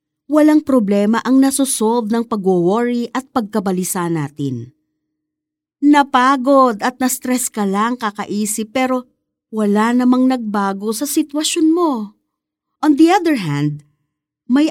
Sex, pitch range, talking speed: female, 170-260 Hz, 110 wpm